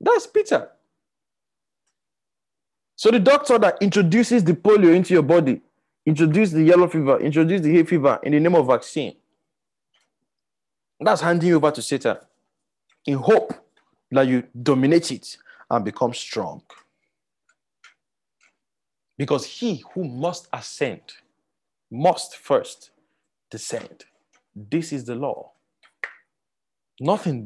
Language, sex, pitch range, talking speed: English, male, 160-215 Hz, 115 wpm